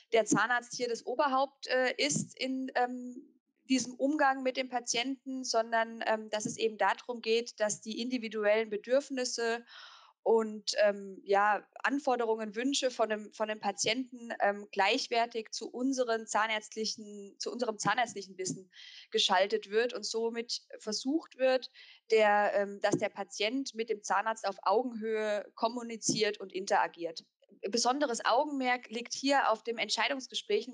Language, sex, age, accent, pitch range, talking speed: English, female, 20-39, German, 205-245 Hz, 125 wpm